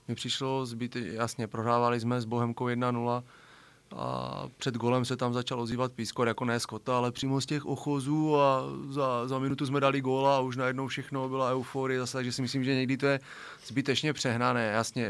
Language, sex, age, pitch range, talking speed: Czech, male, 30-49, 110-125 Hz, 190 wpm